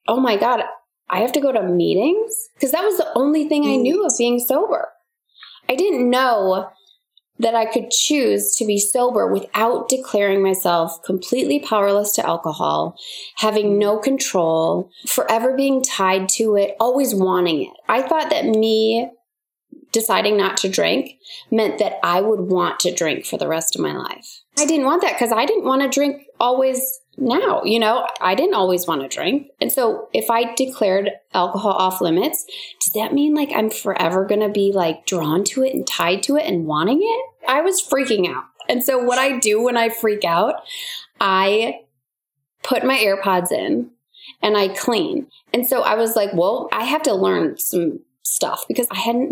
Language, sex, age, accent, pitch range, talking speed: English, female, 20-39, American, 195-275 Hz, 185 wpm